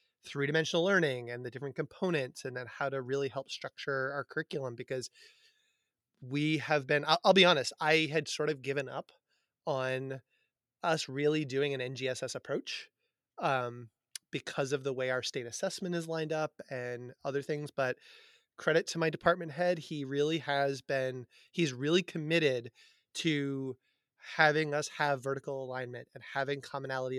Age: 30-49